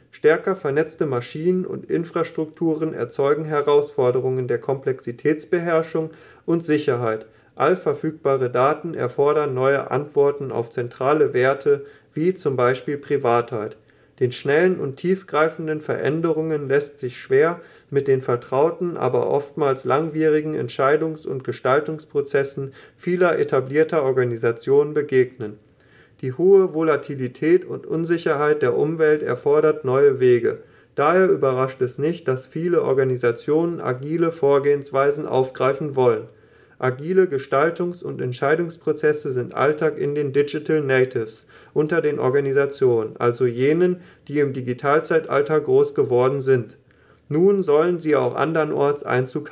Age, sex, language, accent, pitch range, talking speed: 30-49, male, German, German, 130-165 Hz, 110 wpm